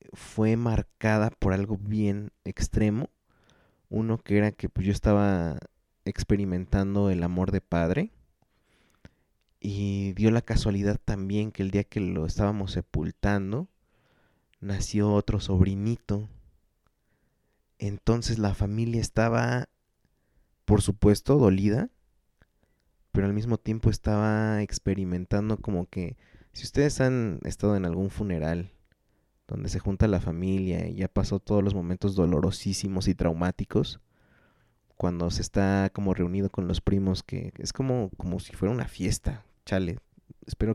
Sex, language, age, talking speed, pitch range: male, Spanish, 20-39, 130 wpm, 95-110 Hz